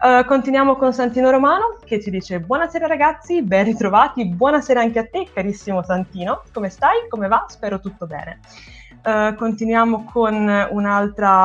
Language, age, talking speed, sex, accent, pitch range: Italian, 20-39, 150 wpm, female, native, 195-260 Hz